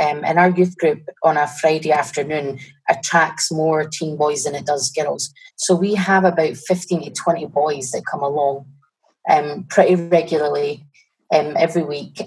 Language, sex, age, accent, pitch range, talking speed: English, female, 30-49, British, 150-175 Hz, 165 wpm